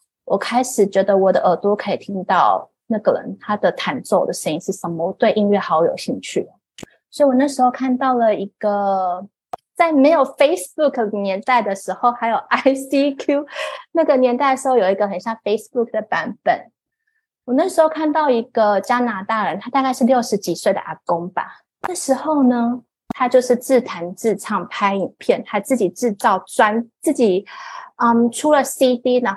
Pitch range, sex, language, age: 200-270 Hz, female, Chinese, 20-39